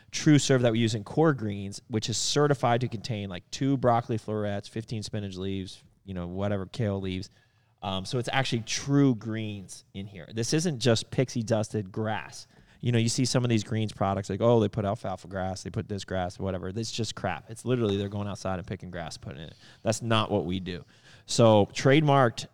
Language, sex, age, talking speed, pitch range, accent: English, male, 30-49, 215 wpm, 100-120 Hz, American